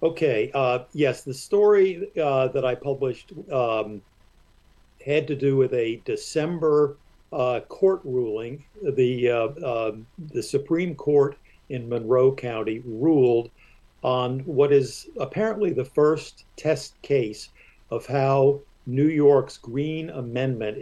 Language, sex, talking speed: English, male, 125 wpm